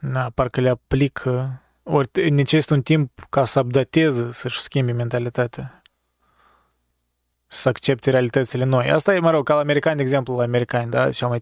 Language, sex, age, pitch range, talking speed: Romanian, male, 20-39, 120-145 Hz, 170 wpm